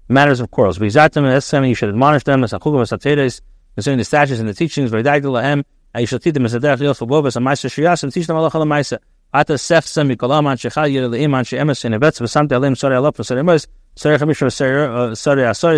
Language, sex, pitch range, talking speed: English, male, 120-150 Hz, 185 wpm